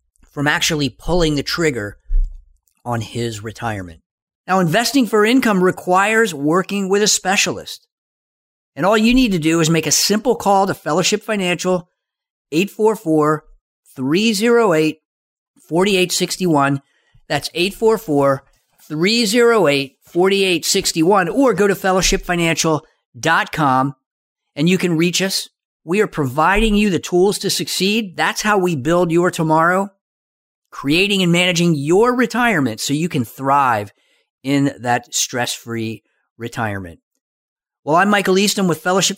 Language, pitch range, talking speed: English, 140-200 Hz, 125 wpm